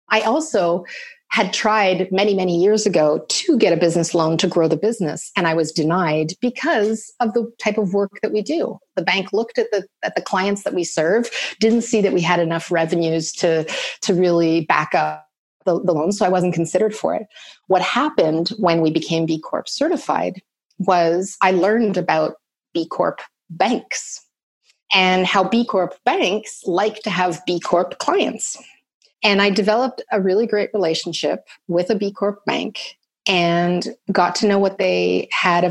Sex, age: female, 30-49